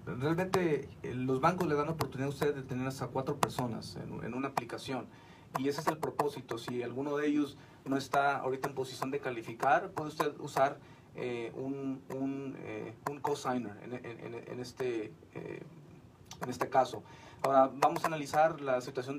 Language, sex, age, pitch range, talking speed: Spanish, male, 30-49, 130-150 Hz, 180 wpm